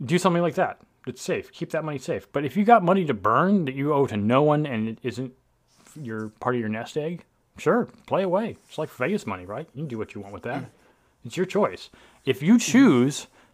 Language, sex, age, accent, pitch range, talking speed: English, male, 30-49, American, 110-150 Hz, 240 wpm